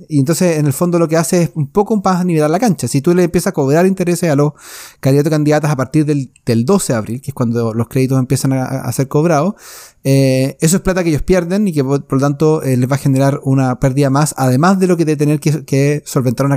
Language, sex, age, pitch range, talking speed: Spanish, male, 30-49, 140-180 Hz, 270 wpm